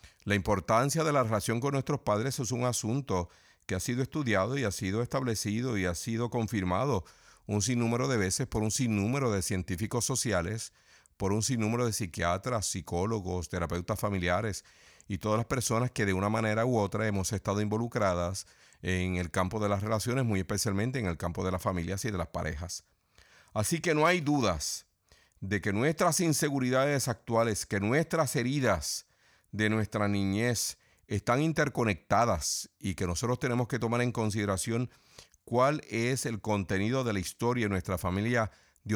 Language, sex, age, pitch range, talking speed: Spanish, male, 50-69, 95-125 Hz, 170 wpm